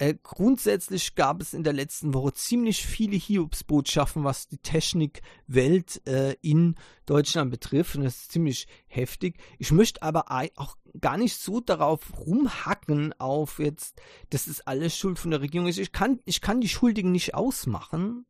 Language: German